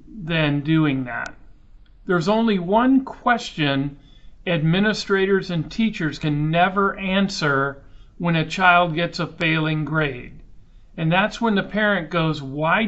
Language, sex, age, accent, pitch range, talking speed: English, male, 50-69, American, 155-205 Hz, 125 wpm